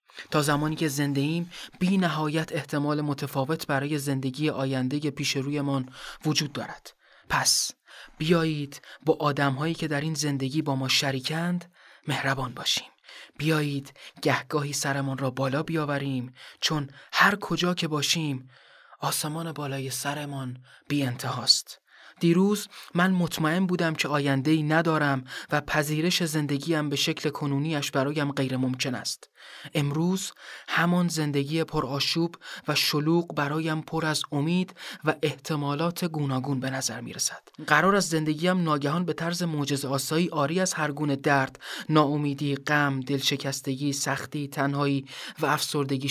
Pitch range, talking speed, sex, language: 140-165 Hz, 125 wpm, male, Persian